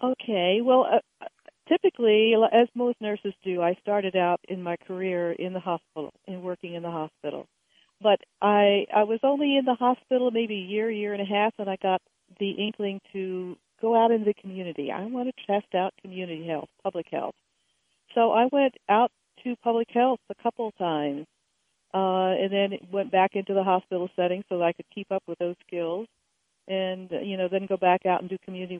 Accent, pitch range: American, 175-215 Hz